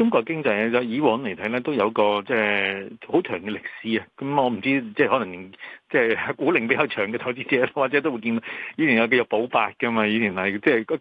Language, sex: Chinese, male